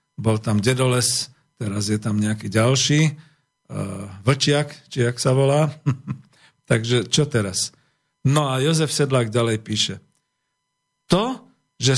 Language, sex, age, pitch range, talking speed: Slovak, male, 50-69, 120-150 Hz, 115 wpm